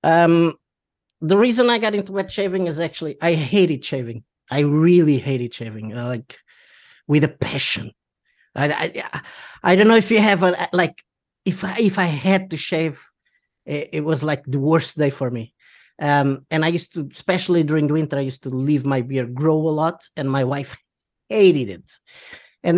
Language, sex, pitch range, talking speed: English, male, 140-170 Hz, 190 wpm